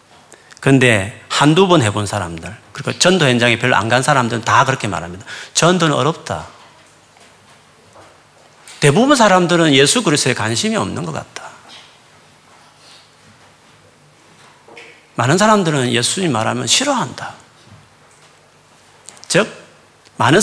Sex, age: male, 40-59